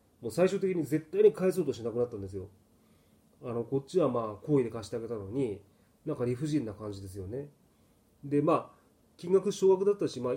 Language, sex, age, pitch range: Japanese, male, 30-49, 115-190 Hz